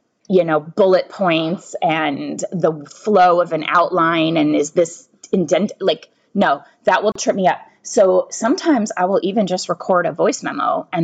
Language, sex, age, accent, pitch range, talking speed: English, female, 20-39, American, 170-225 Hz, 175 wpm